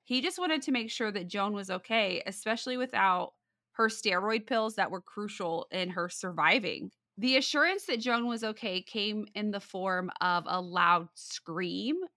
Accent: American